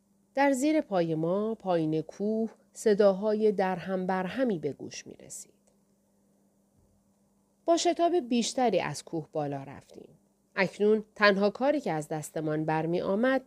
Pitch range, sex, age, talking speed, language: 165-225 Hz, female, 40-59, 125 wpm, Persian